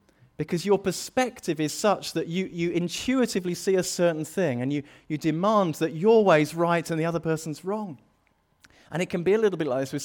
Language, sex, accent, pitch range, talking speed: English, male, British, 105-160 Hz, 215 wpm